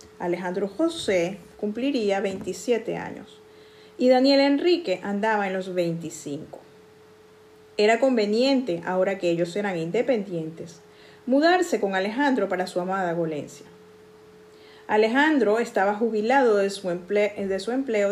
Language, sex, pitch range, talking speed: Spanish, female, 180-245 Hz, 115 wpm